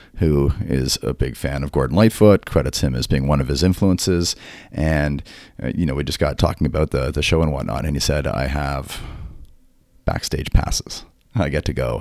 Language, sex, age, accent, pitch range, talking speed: English, male, 40-59, American, 75-90 Hz, 205 wpm